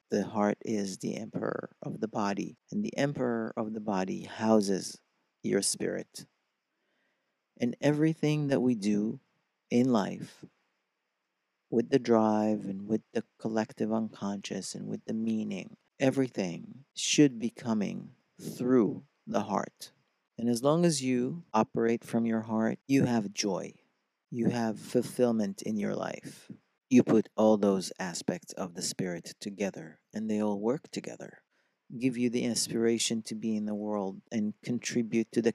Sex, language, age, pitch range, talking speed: male, English, 50-69, 110-135 Hz, 150 wpm